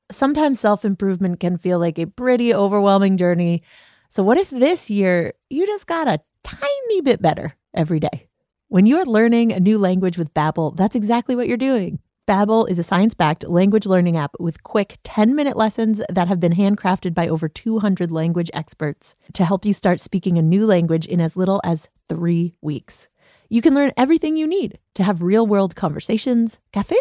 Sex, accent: female, American